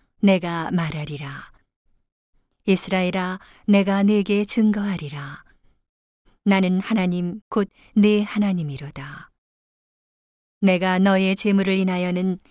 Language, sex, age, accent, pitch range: Korean, female, 40-59, native, 160-200 Hz